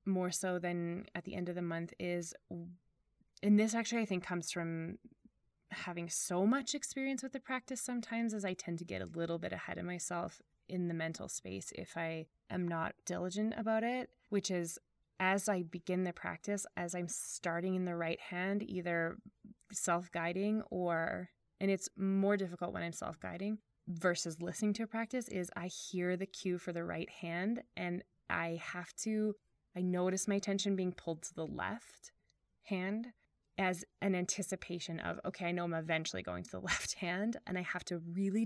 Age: 20-39